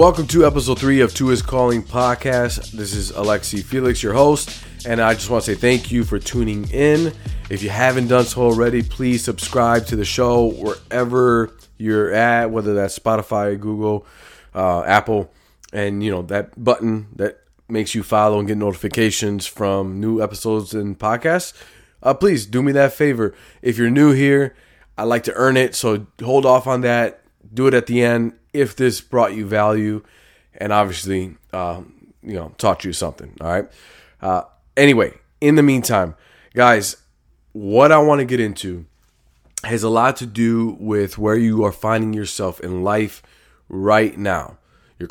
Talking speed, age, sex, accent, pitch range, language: 175 wpm, 20-39, male, American, 100-125 Hz, English